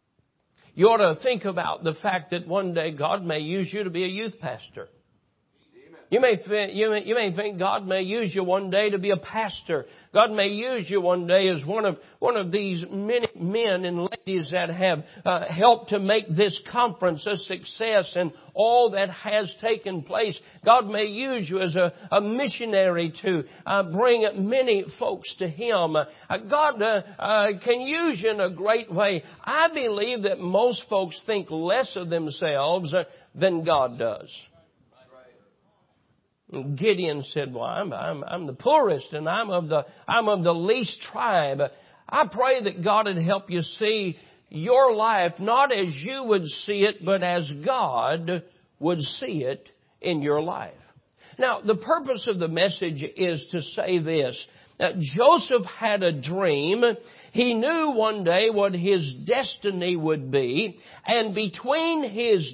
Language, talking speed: English, 165 wpm